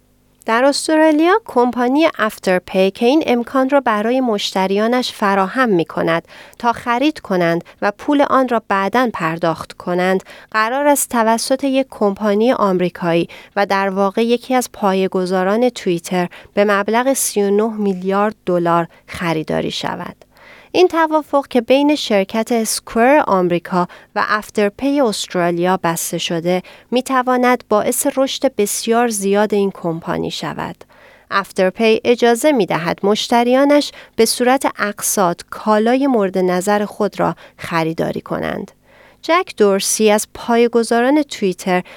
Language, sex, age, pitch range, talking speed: Persian, female, 40-59, 190-250 Hz, 115 wpm